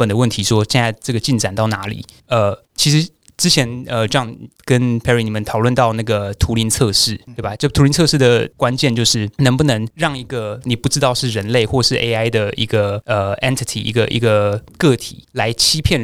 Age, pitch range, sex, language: 20-39, 110-130 Hz, male, Chinese